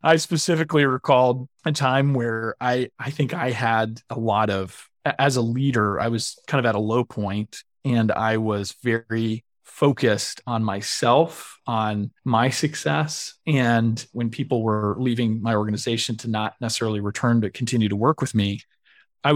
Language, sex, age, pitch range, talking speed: English, male, 30-49, 110-135 Hz, 165 wpm